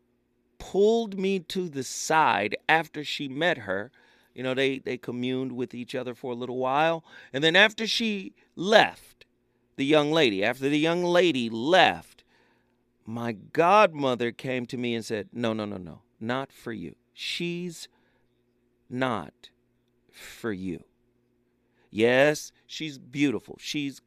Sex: male